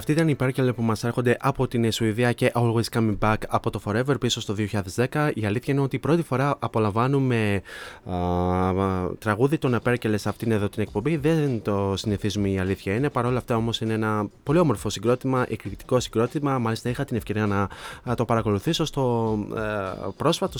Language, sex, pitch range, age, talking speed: Greek, male, 105-125 Hz, 20-39, 185 wpm